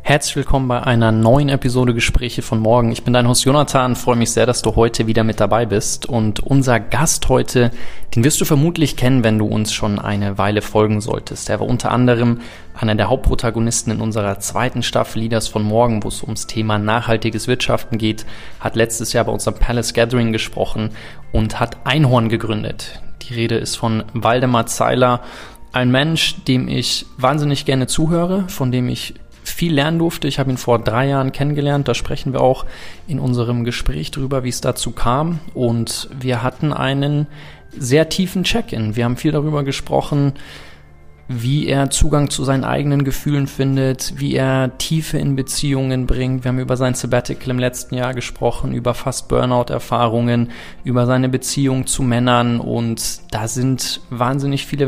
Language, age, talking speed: German, 20-39, 175 wpm